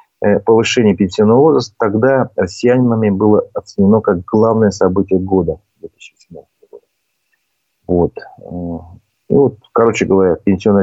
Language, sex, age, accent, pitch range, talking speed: Russian, male, 40-59, native, 95-120 Hz, 95 wpm